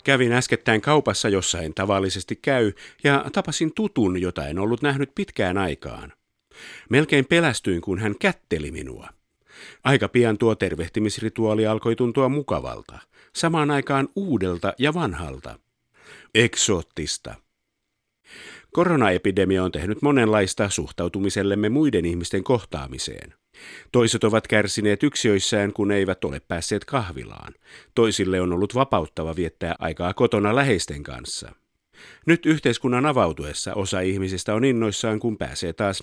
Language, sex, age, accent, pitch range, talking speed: Finnish, male, 50-69, native, 95-125 Hz, 115 wpm